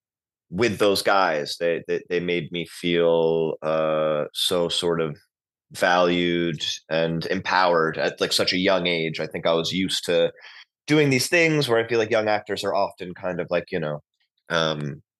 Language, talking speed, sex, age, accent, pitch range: English, 180 wpm, male, 20-39, American, 85-120 Hz